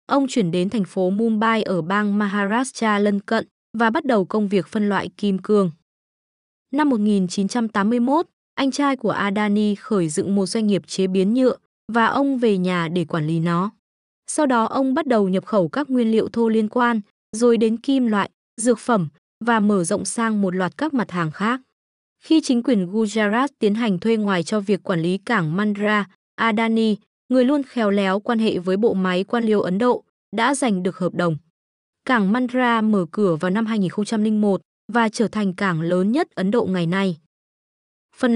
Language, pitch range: Vietnamese, 195-240 Hz